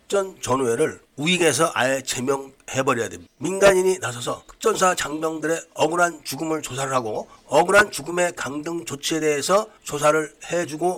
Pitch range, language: 135-180 Hz, Korean